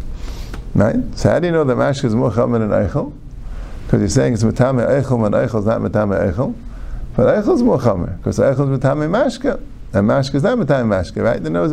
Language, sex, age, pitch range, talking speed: English, male, 50-69, 110-165 Hz, 215 wpm